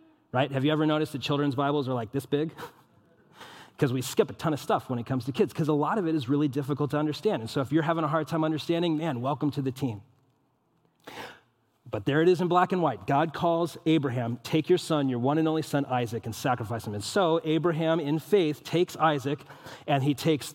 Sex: male